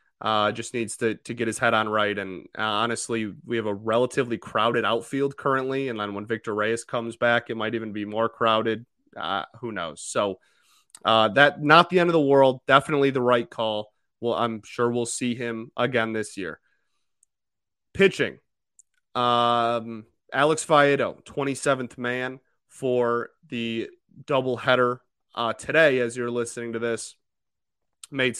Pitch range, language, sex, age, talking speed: 115-145 Hz, English, male, 30-49, 160 wpm